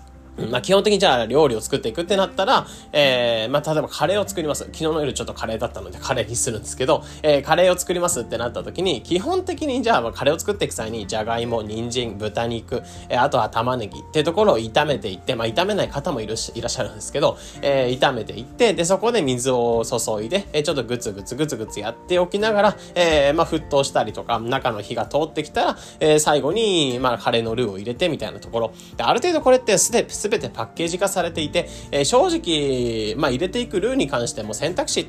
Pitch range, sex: 115-175 Hz, male